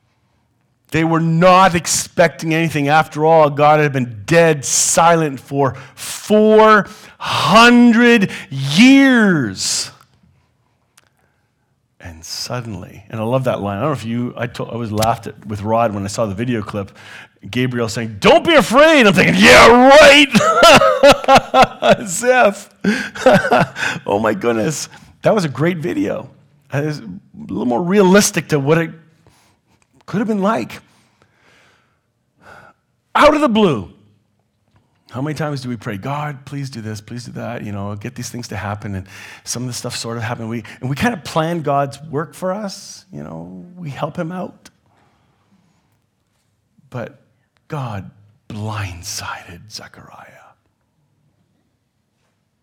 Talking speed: 140 wpm